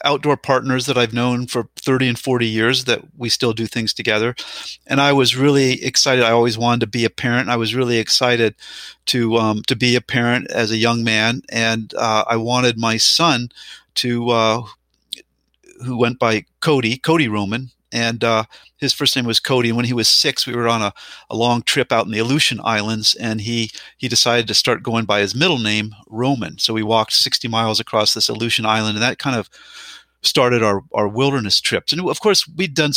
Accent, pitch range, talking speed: American, 110-130 Hz, 215 wpm